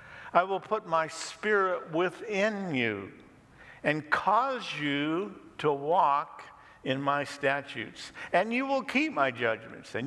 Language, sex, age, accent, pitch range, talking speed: English, male, 50-69, American, 135-180 Hz, 130 wpm